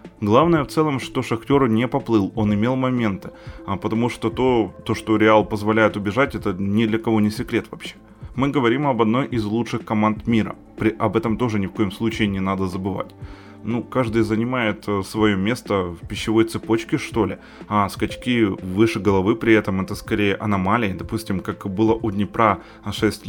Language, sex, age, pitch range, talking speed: Ukrainian, male, 20-39, 105-120 Hz, 175 wpm